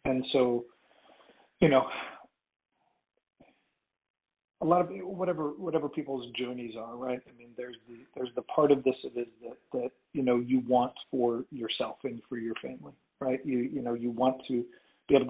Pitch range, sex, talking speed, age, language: 125-150 Hz, male, 175 wpm, 40-59, English